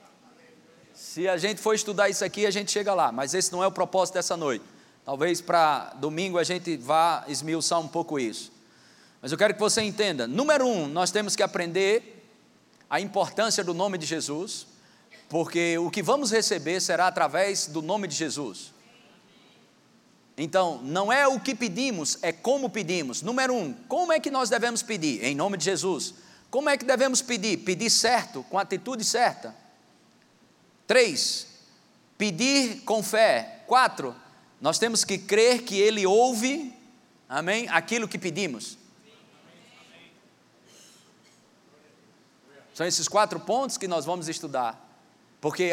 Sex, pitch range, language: male, 170-230 Hz, Portuguese